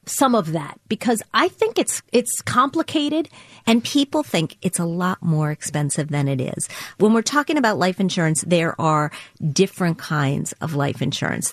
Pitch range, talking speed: 150-190 Hz, 170 wpm